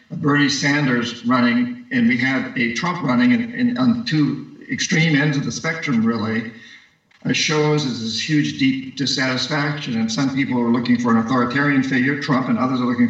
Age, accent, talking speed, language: 50-69, American, 185 wpm, English